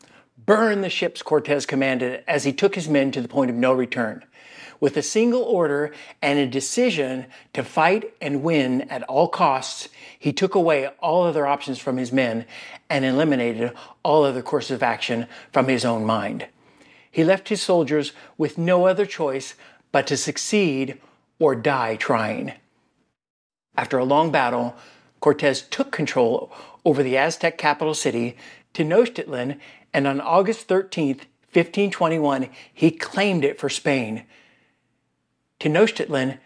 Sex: male